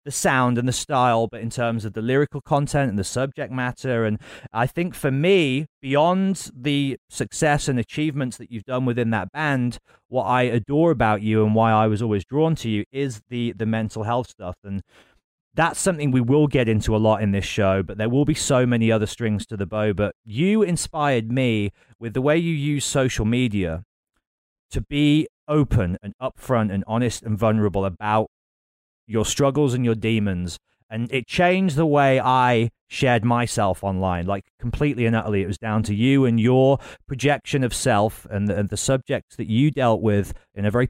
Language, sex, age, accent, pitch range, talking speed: English, male, 30-49, British, 105-135 Hz, 195 wpm